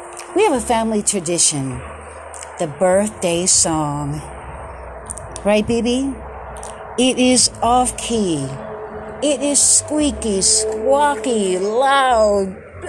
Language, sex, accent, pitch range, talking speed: English, female, American, 175-255 Hz, 85 wpm